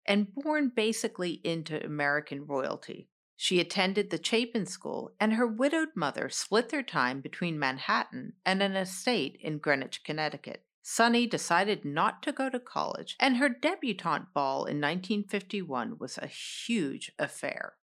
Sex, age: female, 50-69